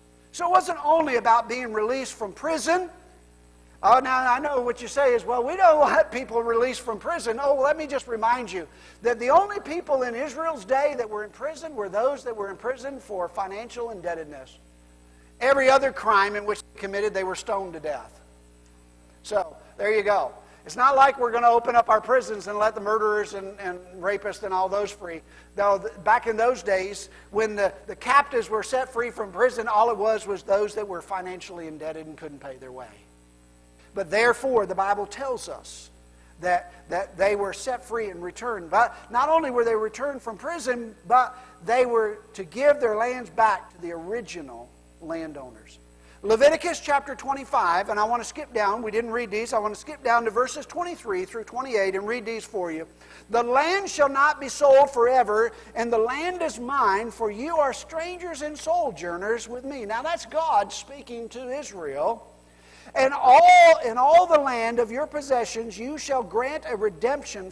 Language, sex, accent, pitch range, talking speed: English, male, American, 195-270 Hz, 195 wpm